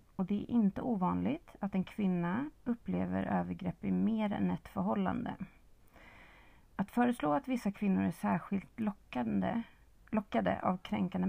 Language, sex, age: Swedish, female, 30-49